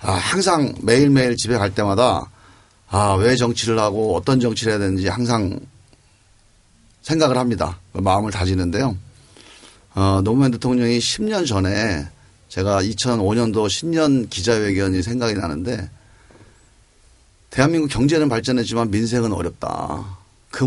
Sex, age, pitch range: male, 40-59, 100-130 Hz